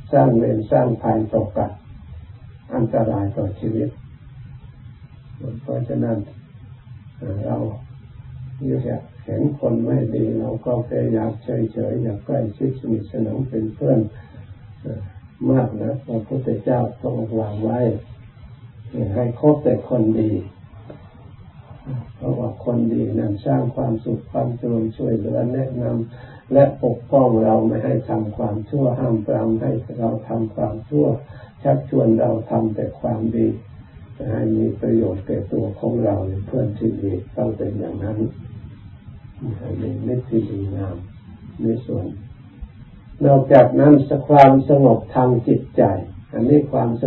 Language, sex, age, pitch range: Thai, male, 50-69, 110-125 Hz